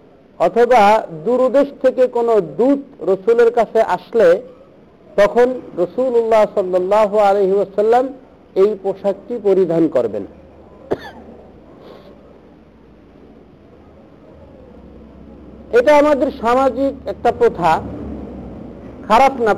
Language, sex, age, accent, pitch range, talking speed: Bengali, male, 50-69, native, 190-255 Hz, 50 wpm